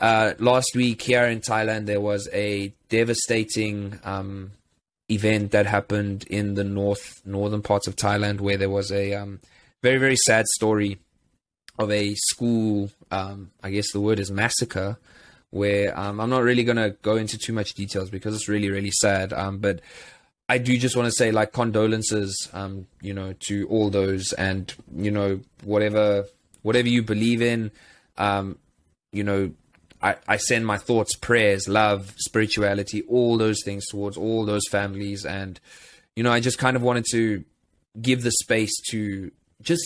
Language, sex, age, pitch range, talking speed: English, male, 20-39, 100-115 Hz, 170 wpm